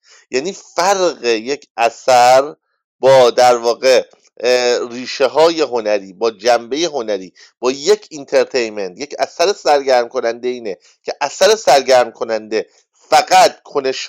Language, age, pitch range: English, 50-69, 125-180 Hz